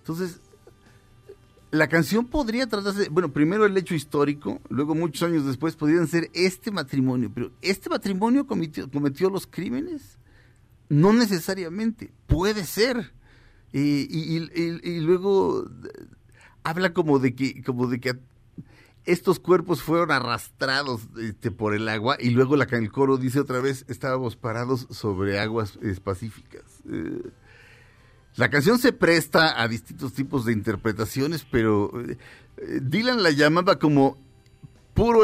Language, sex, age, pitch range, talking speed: Spanish, male, 50-69, 120-170 Hz, 130 wpm